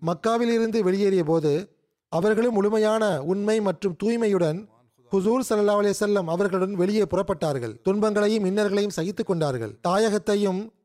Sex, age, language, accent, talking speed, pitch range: male, 30-49, Tamil, native, 105 wpm, 180-220 Hz